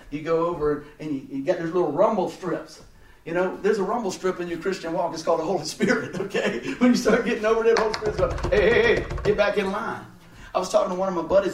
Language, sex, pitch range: English, male, 165-220 Hz